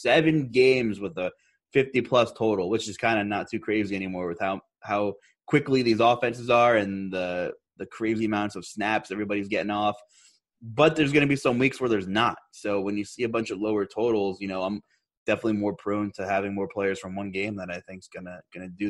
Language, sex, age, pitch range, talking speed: English, male, 20-39, 100-145 Hz, 220 wpm